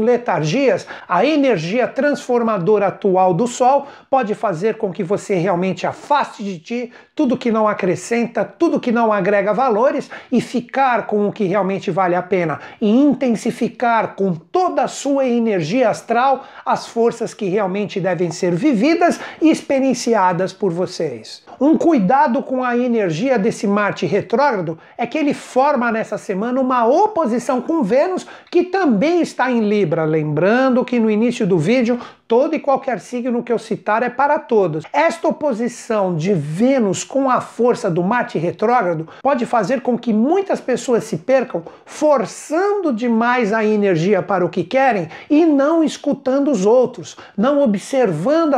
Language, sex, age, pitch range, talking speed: Portuguese, male, 60-79, 200-270 Hz, 155 wpm